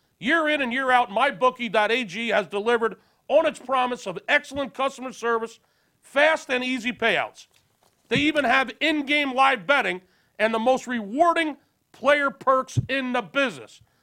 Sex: male